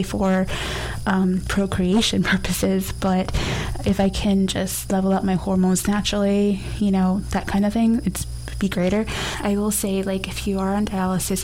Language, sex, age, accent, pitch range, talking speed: English, female, 20-39, American, 185-200 Hz, 170 wpm